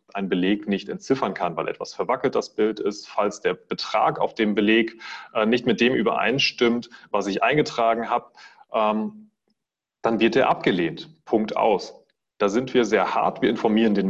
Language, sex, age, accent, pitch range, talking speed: German, male, 30-49, German, 105-170 Hz, 165 wpm